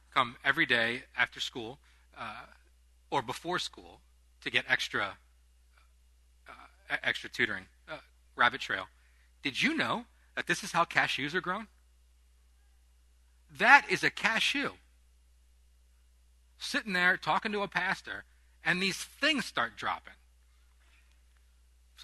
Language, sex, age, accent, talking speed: English, male, 40-59, American, 120 wpm